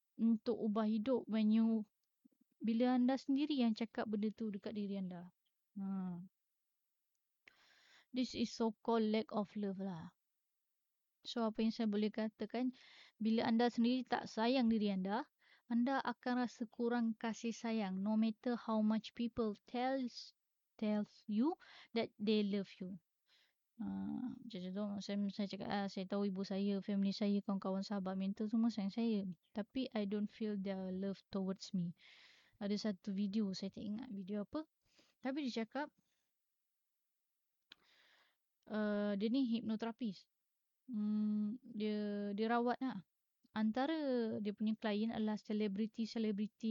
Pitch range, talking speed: 205-235 Hz, 140 wpm